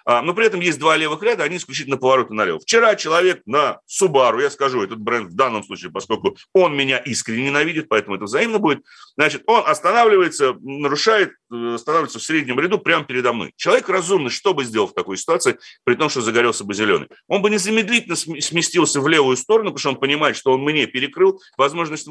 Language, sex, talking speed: Russian, male, 195 wpm